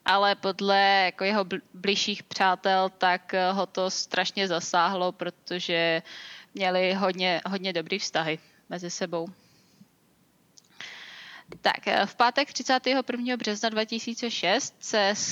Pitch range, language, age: 185-220 Hz, Czech, 20-39